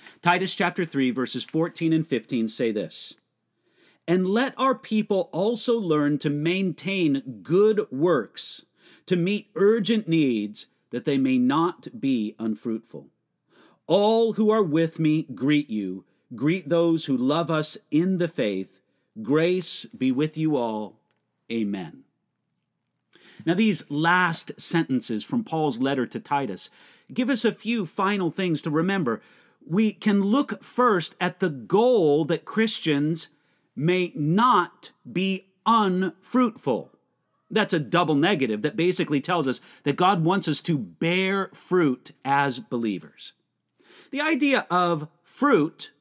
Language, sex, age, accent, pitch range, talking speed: English, male, 40-59, American, 150-215 Hz, 130 wpm